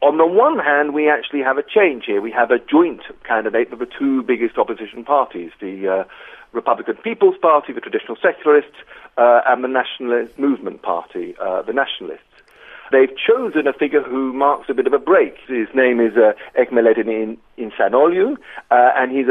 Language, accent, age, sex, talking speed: English, British, 50-69, male, 175 wpm